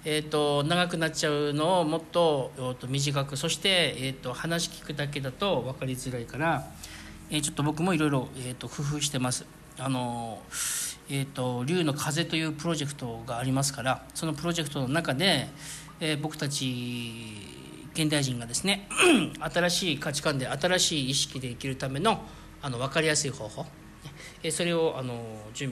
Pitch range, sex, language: 130-160 Hz, male, Japanese